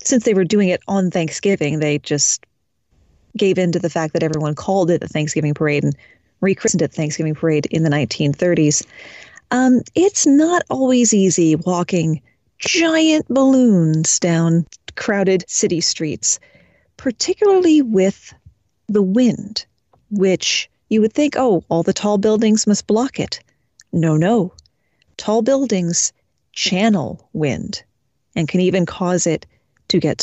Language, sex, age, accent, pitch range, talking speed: English, female, 40-59, American, 160-210 Hz, 140 wpm